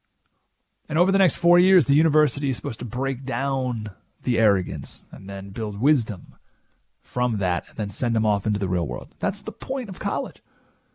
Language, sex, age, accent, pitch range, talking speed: English, male, 30-49, American, 125-210 Hz, 190 wpm